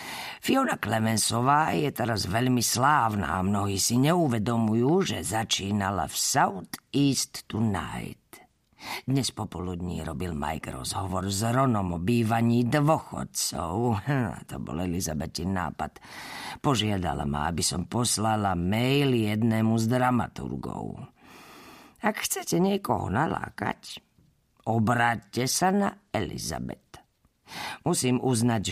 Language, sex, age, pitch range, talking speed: Slovak, female, 40-59, 95-125 Hz, 100 wpm